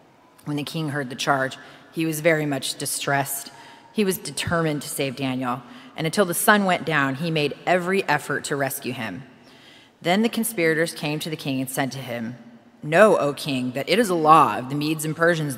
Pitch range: 135-165 Hz